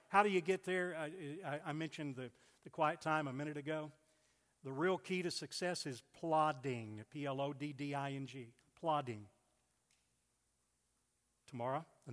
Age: 60-79